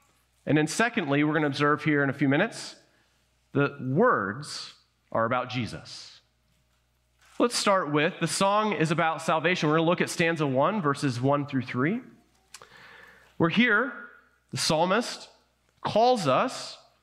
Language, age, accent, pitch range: English, 30-49, American, 135-200 Hz